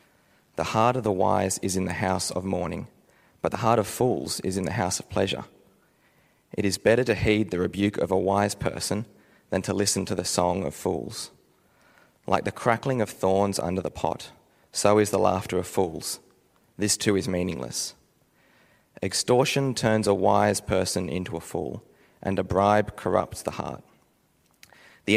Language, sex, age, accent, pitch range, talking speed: English, male, 30-49, Australian, 95-105 Hz, 175 wpm